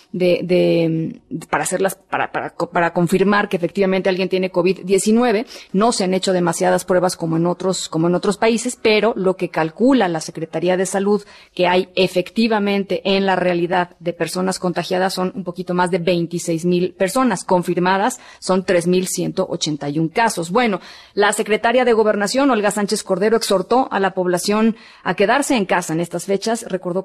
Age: 30-49